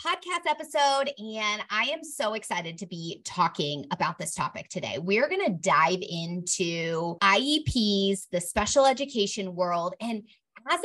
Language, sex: English, female